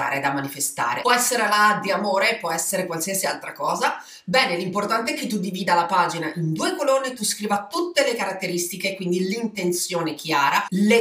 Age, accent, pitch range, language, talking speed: 30-49, native, 175-235 Hz, Italian, 175 wpm